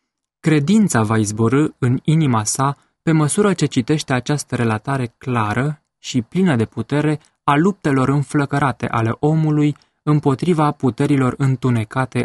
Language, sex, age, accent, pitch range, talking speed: English, male, 20-39, Romanian, 120-150 Hz, 120 wpm